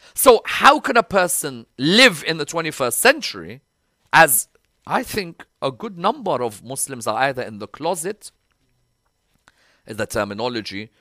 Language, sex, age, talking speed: English, male, 40-59, 135 wpm